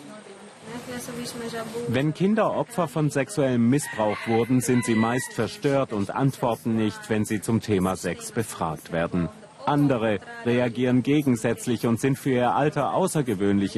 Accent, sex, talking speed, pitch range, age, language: German, male, 130 wpm, 100-130 Hz, 40-59, German